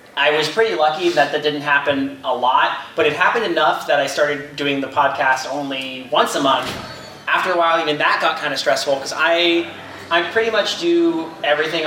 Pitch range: 135-155 Hz